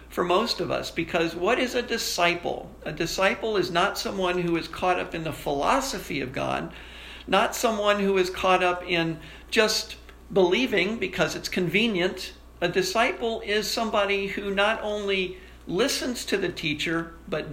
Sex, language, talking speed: male, English, 160 wpm